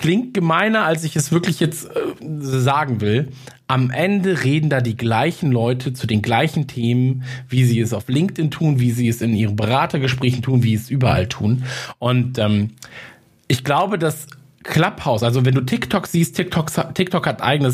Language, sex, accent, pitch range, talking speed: German, male, German, 120-145 Hz, 180 wpm